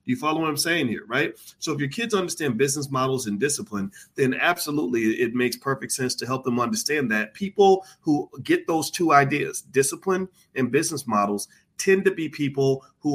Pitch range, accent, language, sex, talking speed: 115-140 Hz, American, English, male, 190 wpm